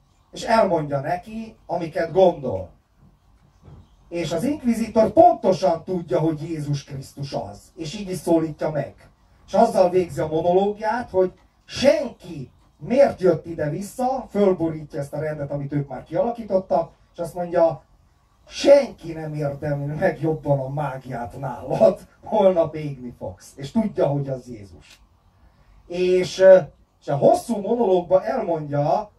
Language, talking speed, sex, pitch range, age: Hungarian, 125 wpm, male, 135-180 Hz, 30-49